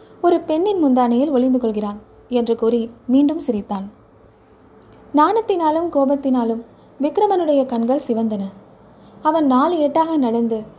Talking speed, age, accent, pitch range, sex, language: 95 wpm, 20-39, native, 230-310 Hz, female, Tamil